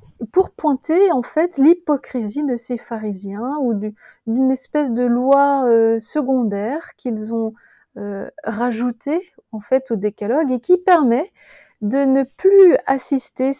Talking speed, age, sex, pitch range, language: 130 wpm, 30-49, female, 220-270 Hz, French